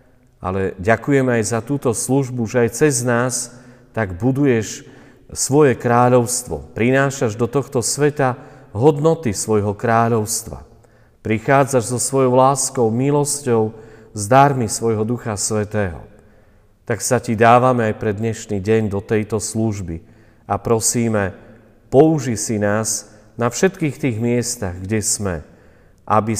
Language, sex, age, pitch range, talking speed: Slovak, male, 40-59, 100-125 Hz, 120 wpm